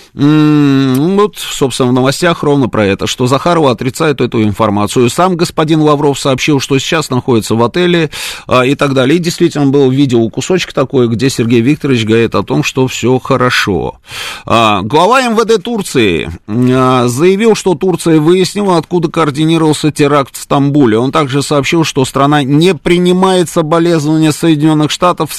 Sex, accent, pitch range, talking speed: male, native, 130-175 Hz, 155 wpm